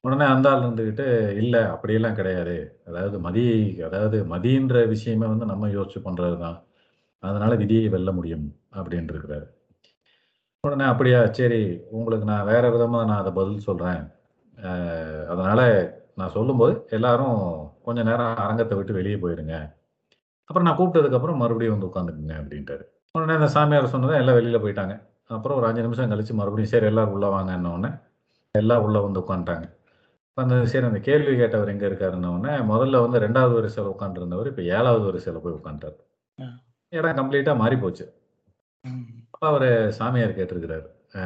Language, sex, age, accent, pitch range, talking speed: Tamil, male, 40-59, native, 95-120 Hz, 140 wpm